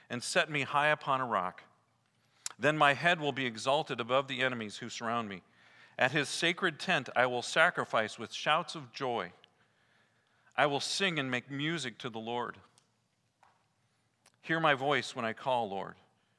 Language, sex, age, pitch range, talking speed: English, male, 40-59, 115-150 Hz, 170 wpm